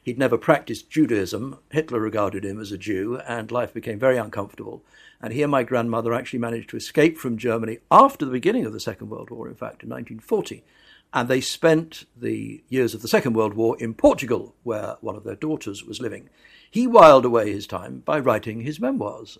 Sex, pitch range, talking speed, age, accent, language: male, 115-160 Hz, 205 wpm, 60-79, British, English